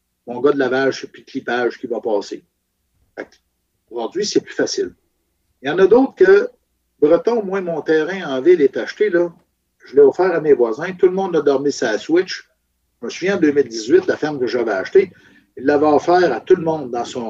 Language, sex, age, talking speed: French, male, 60-79, 220 wpm